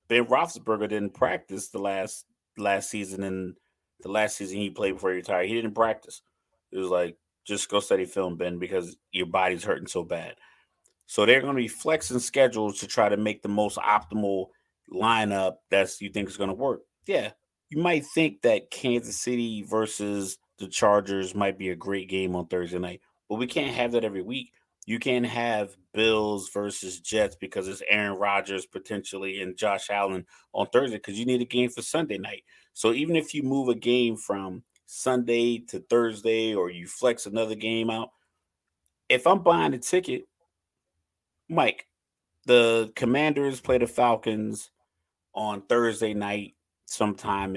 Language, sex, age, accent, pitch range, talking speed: English, male, 30-49, American, 95-120 Hz, 175 wpm